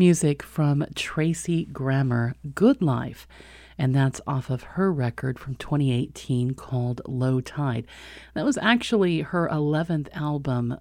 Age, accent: 40-59, American